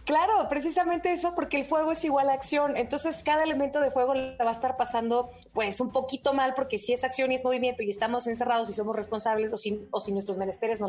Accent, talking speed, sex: Mexican, 235 wpm, female